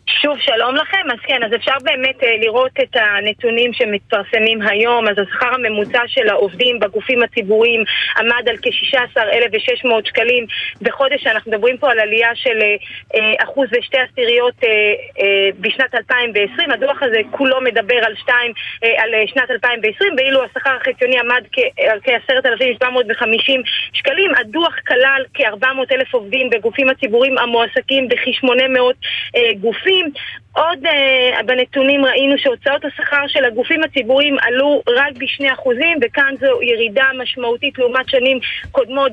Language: Hebrew